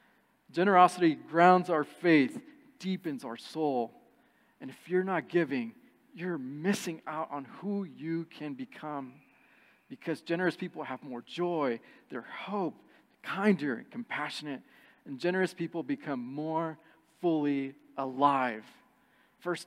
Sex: male